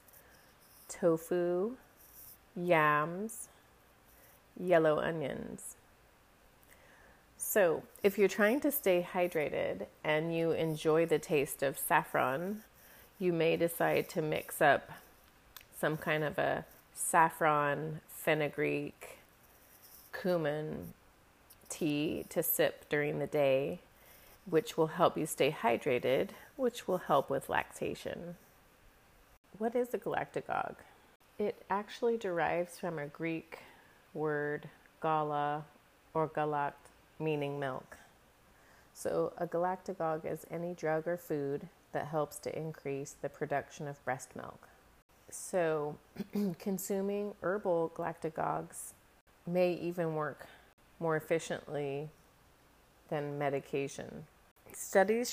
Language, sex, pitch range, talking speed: English, female, 150-180 Hz, 100 wpm